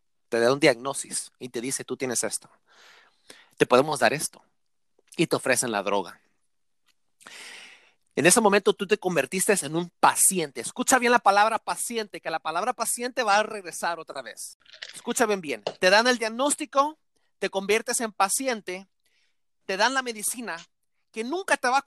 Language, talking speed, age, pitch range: English, 170 wpm, 40-59, 185-235 Hz